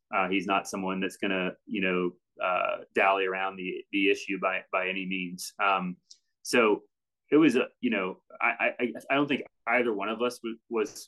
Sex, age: male, 30-49